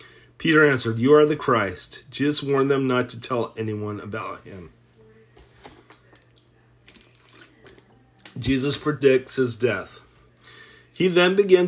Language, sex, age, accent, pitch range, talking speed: English, male, 40-59, American, 120-145 Hz, 115 wpm